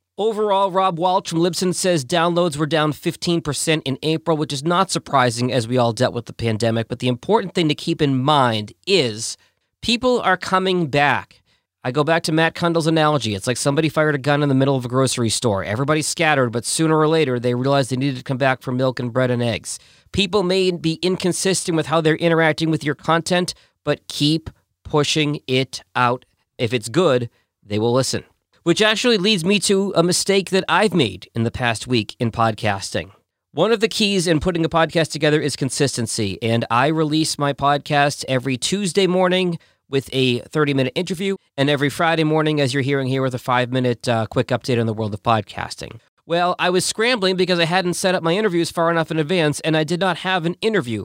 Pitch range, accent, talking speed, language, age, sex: 125-175 Hz, American, 205 wpm, English, 40-59, male